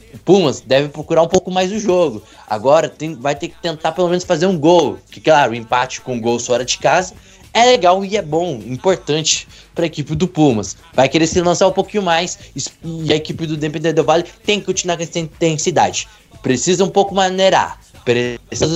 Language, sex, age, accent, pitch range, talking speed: Portuguese, male, 20-39, Brazilian, 140-185 Hz, 210 wpm